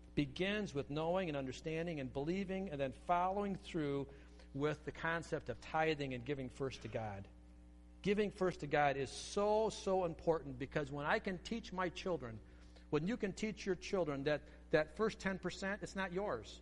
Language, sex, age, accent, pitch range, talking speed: English, male, 50-69, American, 135-195 Hz, 175 wpm